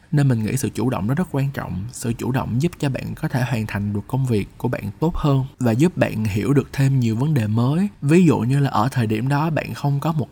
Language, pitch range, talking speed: Vietnamese, 115-145 Hz, 285 wpm